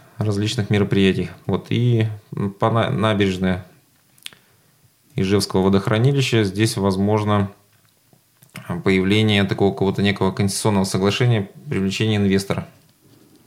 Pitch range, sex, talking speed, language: 95-120 Hz, male, 80 wpm, Russian